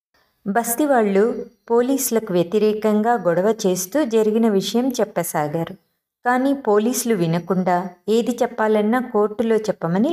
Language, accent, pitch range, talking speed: Telugu, native, 180-235 Hz, 90 wpm